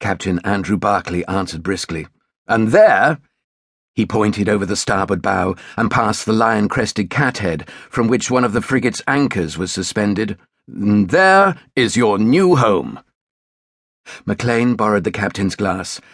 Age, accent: 50-69, British